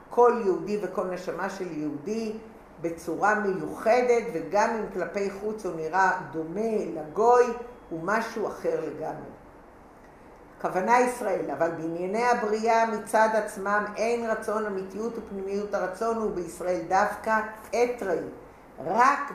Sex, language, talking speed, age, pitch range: female, English, 105 wpm, 50-69, 175-220 Hz